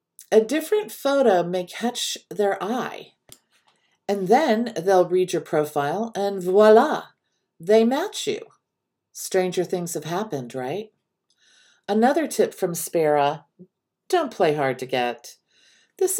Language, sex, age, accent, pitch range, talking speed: English, female, 50-69, American, 150-220 Hz, 120 wpm